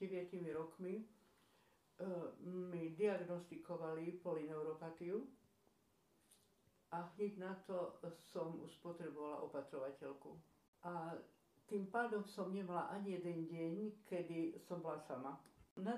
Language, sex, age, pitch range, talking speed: Slovak, female, 50-69, 170-195 Hz, 100 wpm